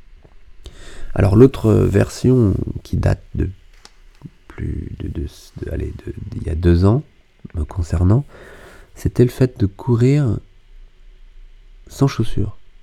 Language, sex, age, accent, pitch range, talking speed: French, male, 40-59, French, 85-105 Hz, 120 wpm